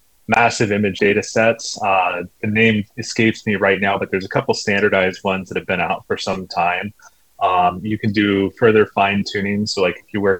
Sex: male